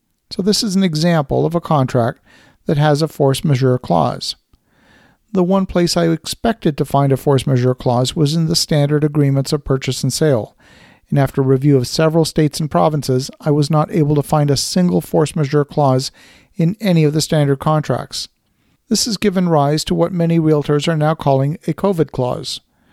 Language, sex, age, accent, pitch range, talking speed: English, male, 50-69, American, 140-165 Hz, 190 wpm